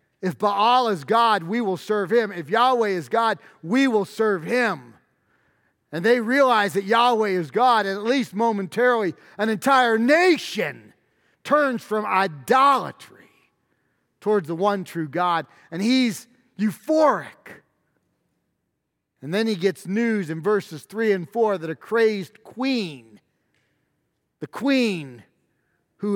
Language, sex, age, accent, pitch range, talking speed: English, male, 40-59, American, 190-250 Hz, 130 wpm